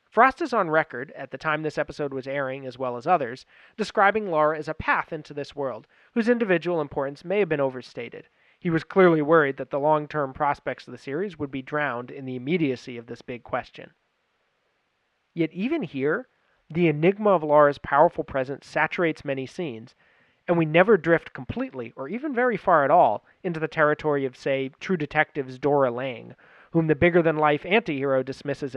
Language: English